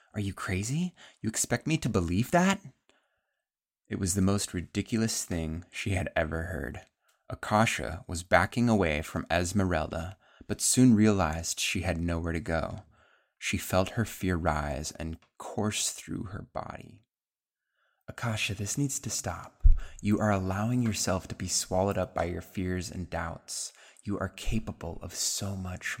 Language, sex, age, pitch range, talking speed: English, male, 20-39, 85-110 Hz, 155 wpm